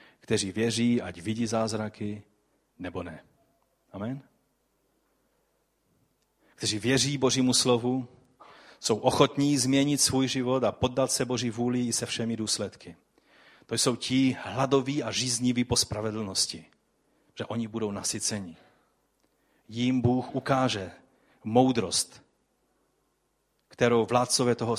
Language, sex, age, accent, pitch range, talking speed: Czech, male, 40-59, native, 115-140 Hz, 110 wpm